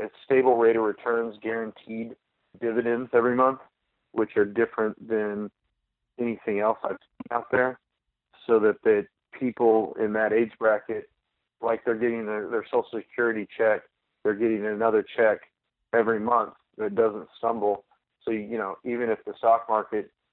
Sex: male